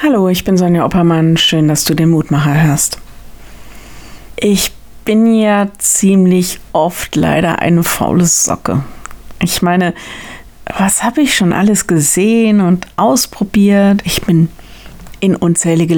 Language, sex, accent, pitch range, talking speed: German, female, German, 165-210 Hz, 130 wpm